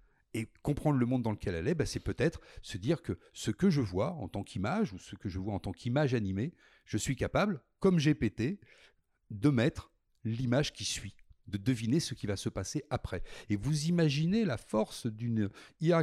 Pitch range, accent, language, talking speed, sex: 110-165 Hz, French, French, 205 wpm, male